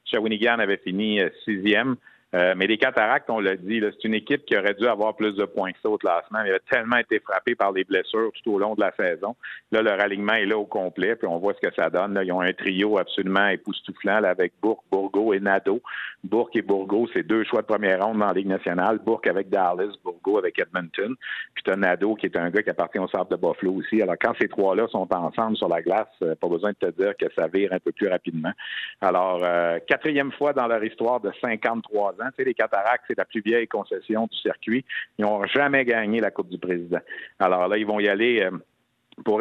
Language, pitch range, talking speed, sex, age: French, 100-120 Hz, 235 wpm, male, 50-69